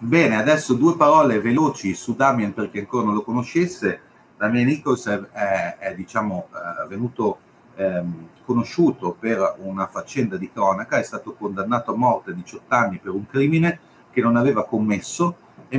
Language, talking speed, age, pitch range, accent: Italian, 165 wpm, 40-59, 105-150 Hz, native